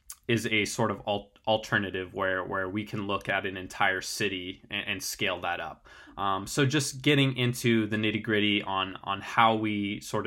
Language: English